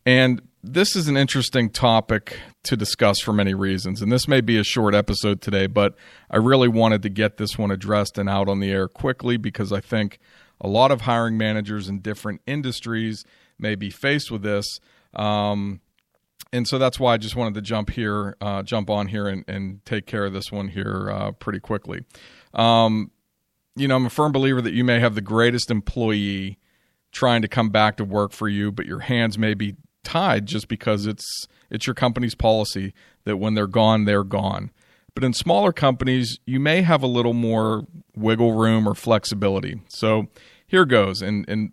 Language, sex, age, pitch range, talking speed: English, male, 40-59, 105-120 Hz, 195 wpm